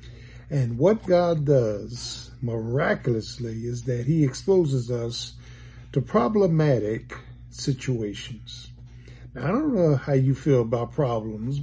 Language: English